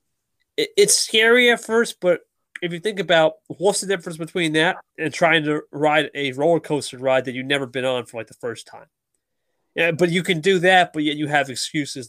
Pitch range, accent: 140-205 Hz, American